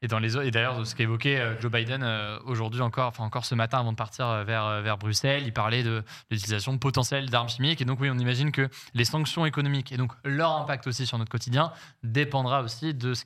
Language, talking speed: French, 220 wpm